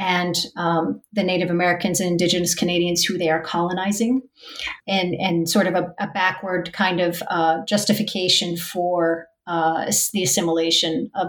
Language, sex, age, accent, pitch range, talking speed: English, female, 40-59, American, 170-205 Hz, 150 wpm